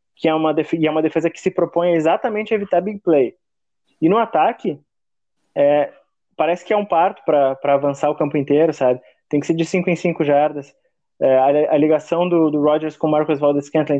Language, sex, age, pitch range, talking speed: Portuguese, male, 20-39, 145-165 Hz, 215 wpm